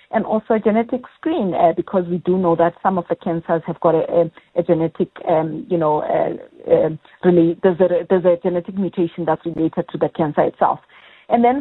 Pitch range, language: 175-230 Hz, English